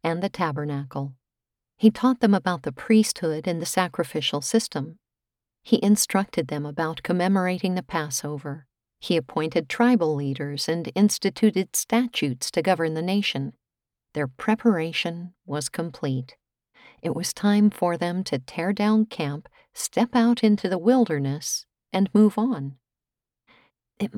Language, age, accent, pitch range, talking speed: English, 50-69, American, 150-210 Hz, 130 wpm